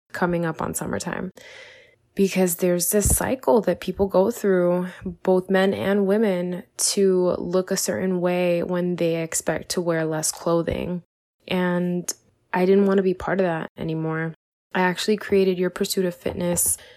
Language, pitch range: English, 165-195 Hz